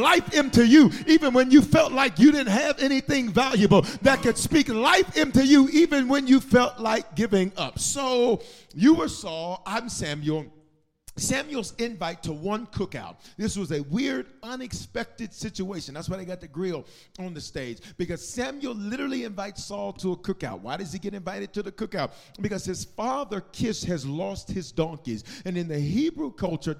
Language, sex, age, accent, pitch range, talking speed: English, male, 40-59, American, 160-235 Hz, 180 wpm